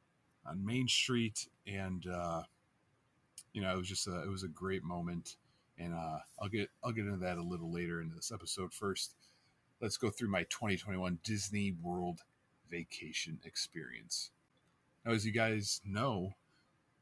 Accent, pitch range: American, 90-115 Hz